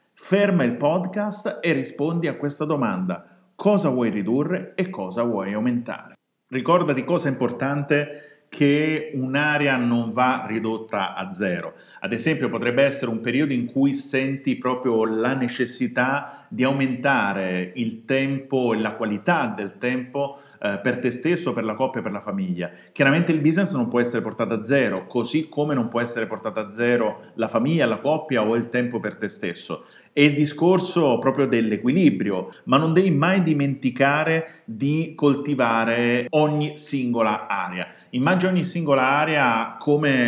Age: 40-59